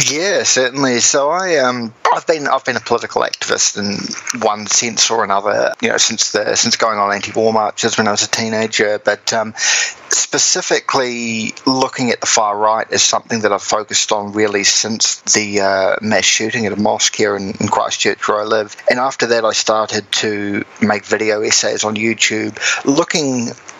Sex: male